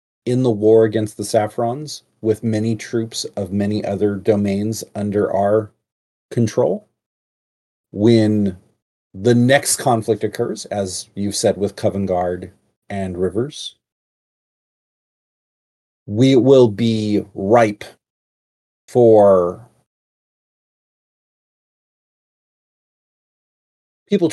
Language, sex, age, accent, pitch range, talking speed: English, male, 40-59, American, 95-110 Hz, 85 wpm